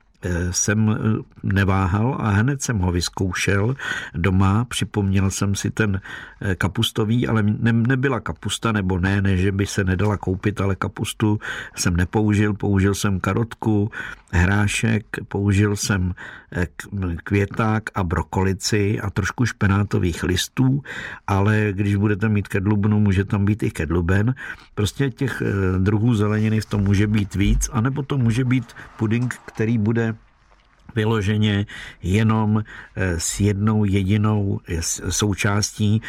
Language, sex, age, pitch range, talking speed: Czech, male, 50-69, 95-115 Hz, 120 wpm